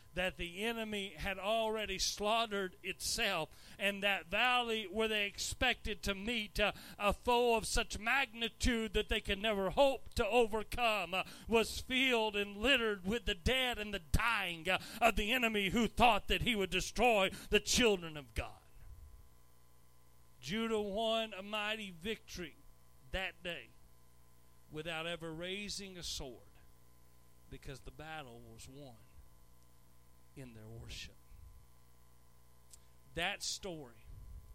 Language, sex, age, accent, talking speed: English, male, 40-59, American, 130 wpm